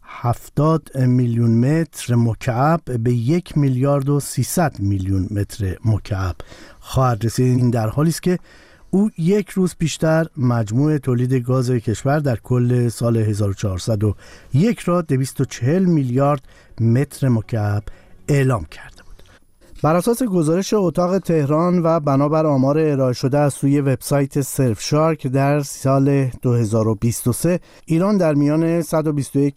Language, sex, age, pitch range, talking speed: Persian, male, 50-69, 120-150 Hz, 120 wpm